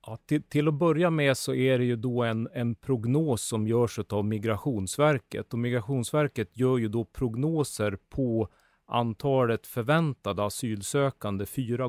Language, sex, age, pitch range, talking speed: Swedish, male, 30-49, 110-140 Hz, 140 wpm